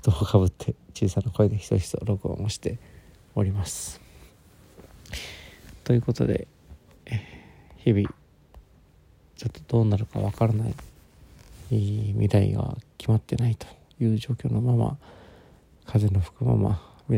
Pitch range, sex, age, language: 95-120 Hz, male, 40-59, Japanese